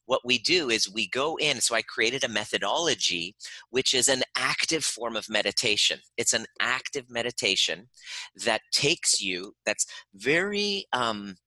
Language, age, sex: English, 30-49, male